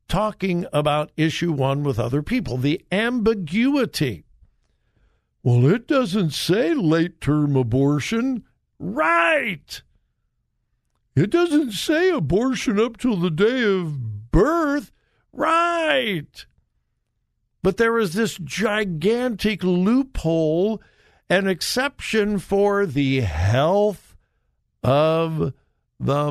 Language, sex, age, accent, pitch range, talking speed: English, male, 60-79, American, 145-210 Hz, 90 wpm